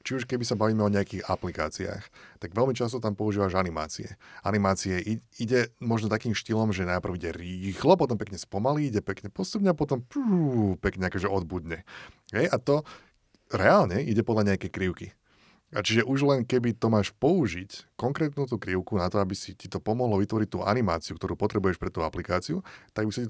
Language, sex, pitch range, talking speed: Slovak, male, 95-115 Hz, 185 wpm